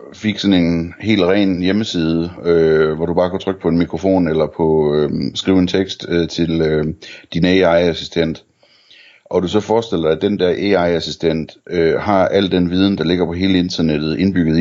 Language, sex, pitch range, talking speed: Danish, male, 80-100 Hz, 190 wpm